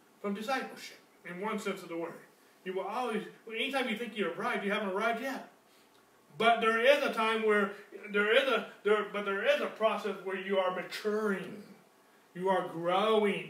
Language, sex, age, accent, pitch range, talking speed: English, male, 30-49, American, 195-275 Hz, 180 wpm